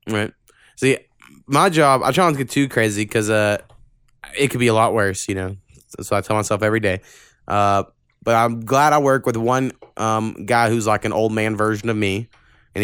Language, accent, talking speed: English, American, 215 wpm